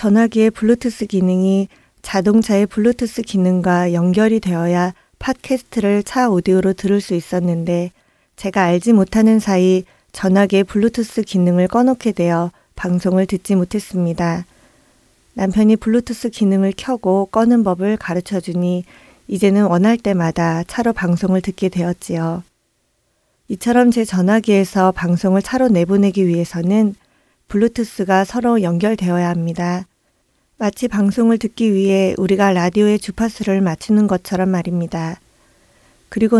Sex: female